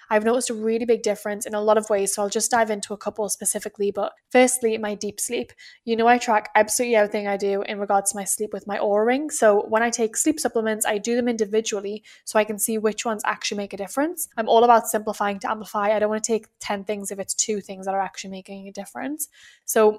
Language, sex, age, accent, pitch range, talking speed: English, female, 10-29, British, 205-235 Hz, 255 wpm